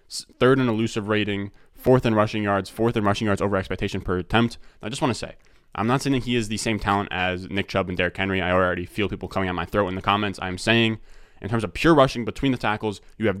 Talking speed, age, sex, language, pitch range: 260 wpm, 20-39, male, English, 90-110 Hz